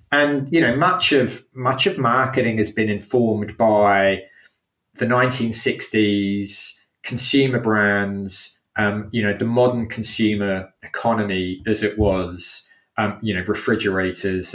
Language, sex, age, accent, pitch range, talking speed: English, male, 30-49, British, 105-135 Hz, 125 wpm